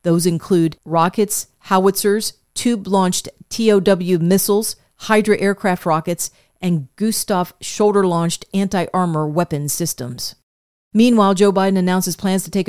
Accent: American